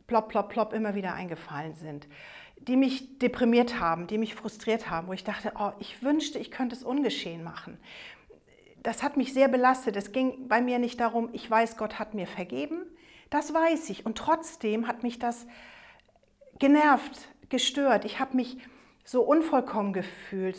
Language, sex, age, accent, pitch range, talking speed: German, female, 40-59, German, 195-255 Hz, 165 wpm